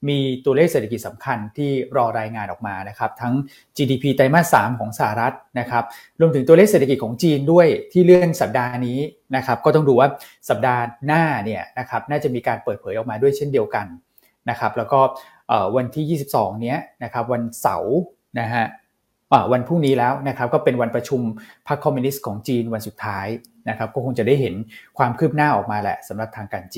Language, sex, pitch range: Thai, male, 115-140 Hz